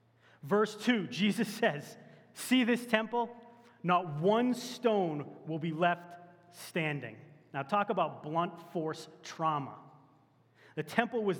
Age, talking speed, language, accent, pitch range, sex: 30-49, 120 wpm, English, American, 170-225 Hz, male